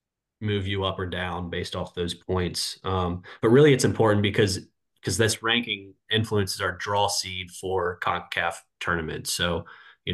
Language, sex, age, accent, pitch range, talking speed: English, male, 20-39, American, 95-110 Hz, 160 wpm